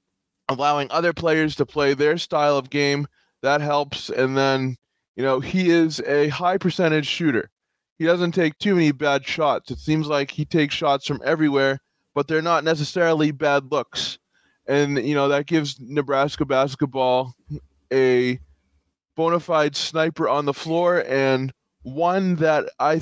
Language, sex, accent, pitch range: English, male, American, 130-155 Hz